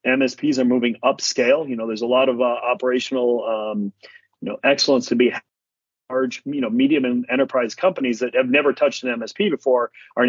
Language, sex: English, male